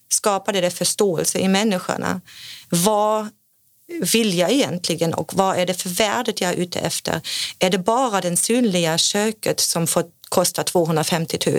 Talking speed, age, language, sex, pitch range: 150 wpm, 30-49, Swedish, female, 170-210 Hz